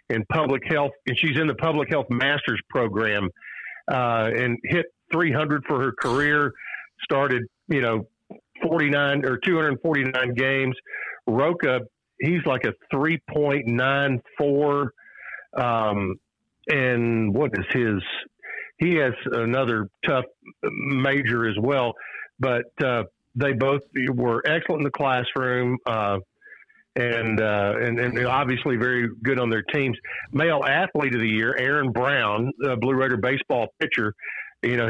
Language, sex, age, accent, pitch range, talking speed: English, male, 50-69, American, 120-145 Hz, 130 wpm